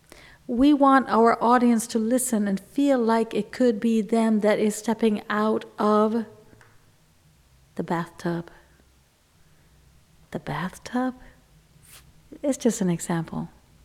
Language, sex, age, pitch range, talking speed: English, female, 40-59, 180-230 Hz, 115 wpm